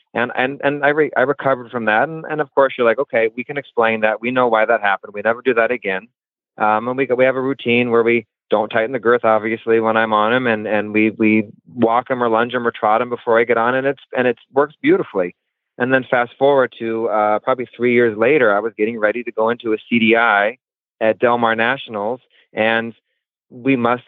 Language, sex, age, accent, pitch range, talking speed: English, male, 30-49, American, 110-125 Hz, 240 wpm